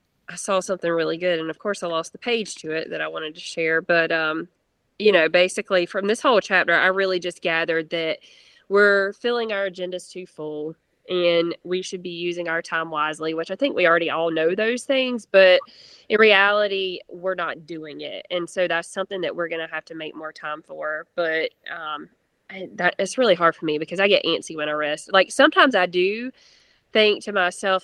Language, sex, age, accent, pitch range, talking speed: English, female, 20-39, American, 165-200 Hz, 215 wpm